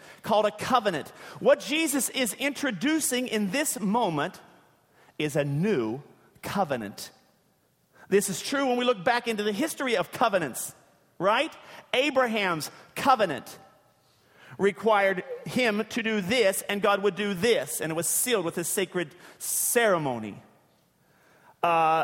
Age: 40-59